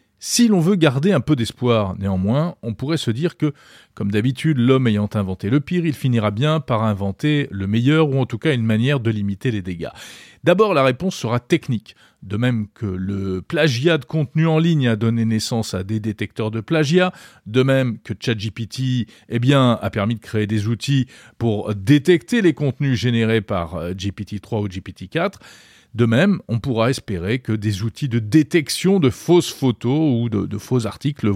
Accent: French